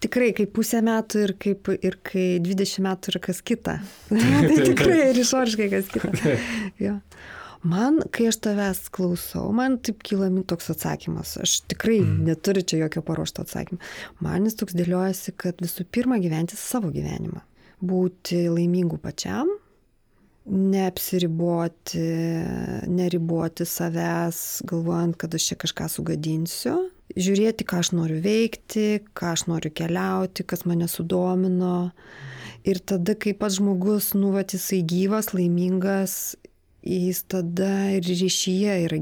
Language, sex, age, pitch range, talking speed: English, female, 30-49, 175-210 Hz, 130 wpm